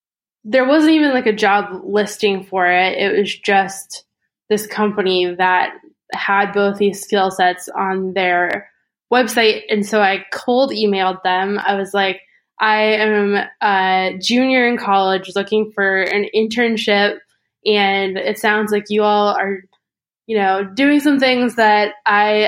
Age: 10-29